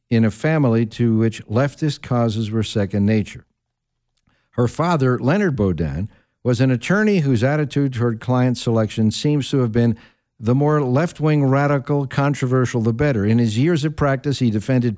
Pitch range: 110-140 Hz